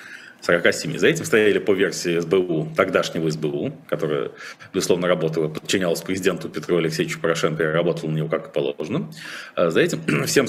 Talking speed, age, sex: 150 wpm, 40-59, male